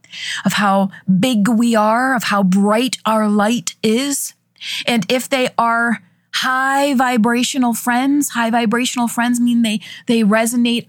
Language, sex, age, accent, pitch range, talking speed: English, female, 30-49, American, 215-285 Hz, 140 wpm